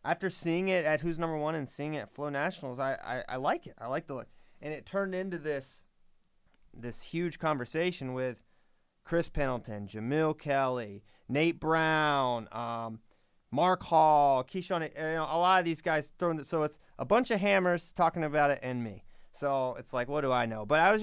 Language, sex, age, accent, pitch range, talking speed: English, male, 30-49, American, 135-180 Hz, 205 wpm